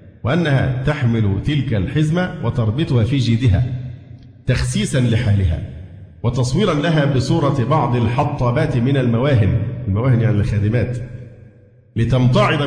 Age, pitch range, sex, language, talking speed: 50-69, 110-135 Hz, male, Arabic, 95 wpm